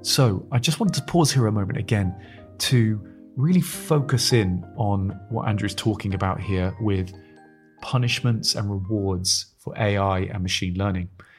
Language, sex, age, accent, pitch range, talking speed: English, male, 30-49, British, 95-125 Hz, 160 wpm